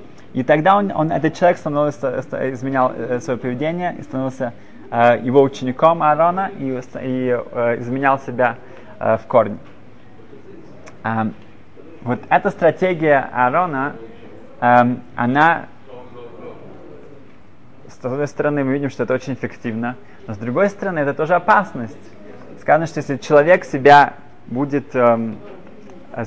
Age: 20-39